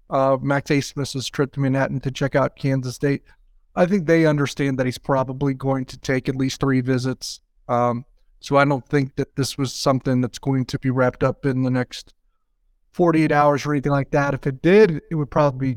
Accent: American